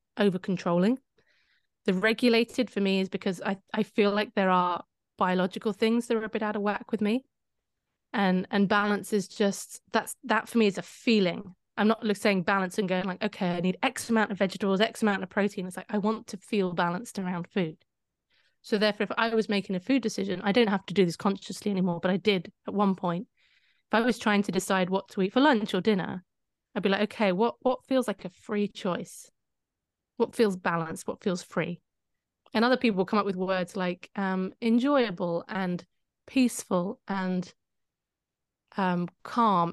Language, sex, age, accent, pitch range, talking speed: English, female, 20-39, British, 185-220 Hz, 200 wpm